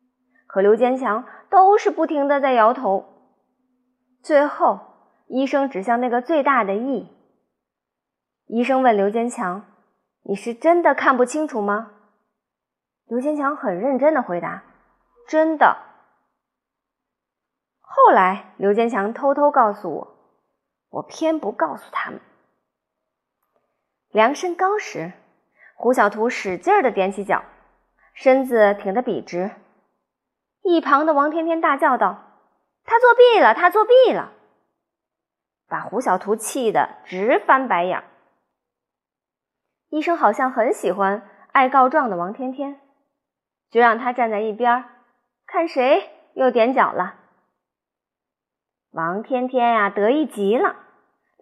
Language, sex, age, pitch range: Chinese, female, 20-39, 220-315 Hz